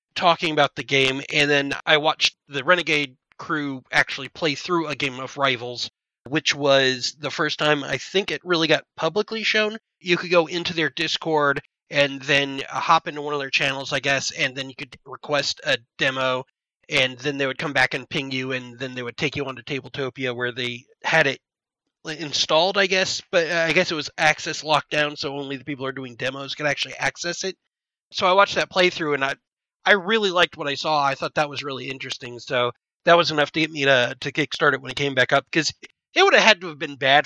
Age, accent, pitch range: 30-49, American, 135-175 Hz